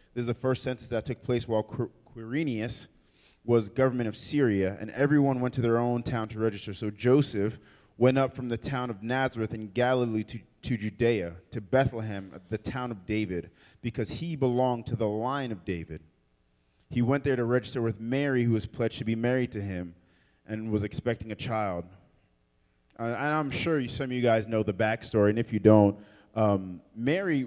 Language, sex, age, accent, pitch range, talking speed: English, male, 30-49, American, 110-145 Hz, 190 wpm